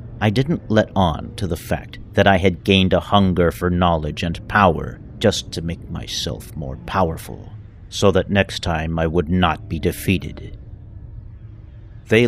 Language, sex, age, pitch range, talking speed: English, male, 50-69, 90-110 Hz, 160 wpm